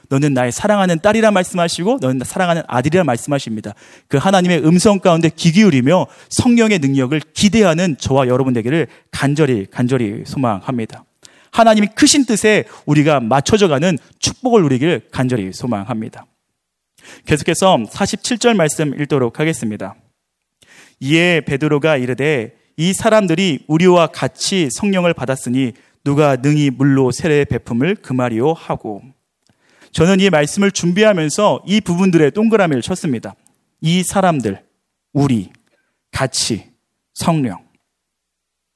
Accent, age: native, 30-49